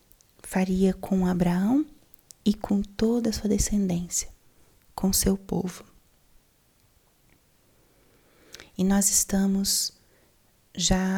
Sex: female